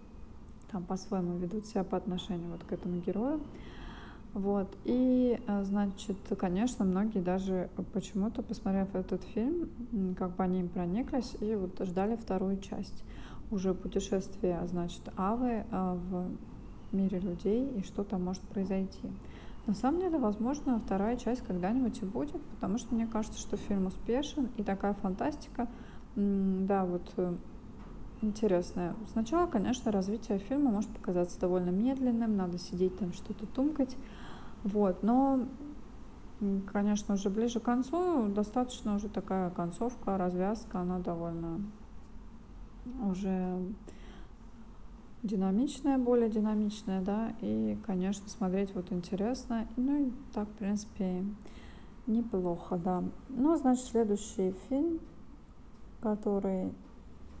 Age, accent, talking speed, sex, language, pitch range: 20-39, native, 120 wpm, female, Russian, 190-235 Hz